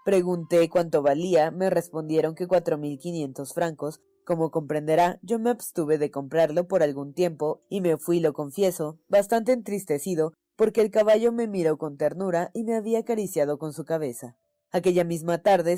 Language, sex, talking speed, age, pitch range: Spanish, female, 165 wpm, 20-39, 155-190 Hz